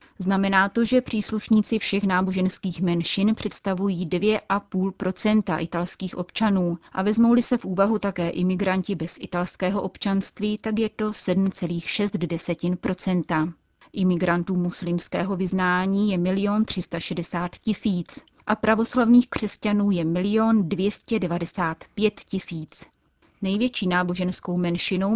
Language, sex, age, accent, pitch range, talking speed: Czech, female, 30-49, native, 175-210 Hz, 105 wpm